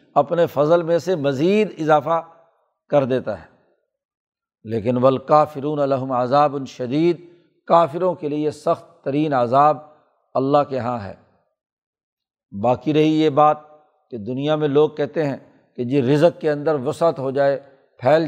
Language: Urdu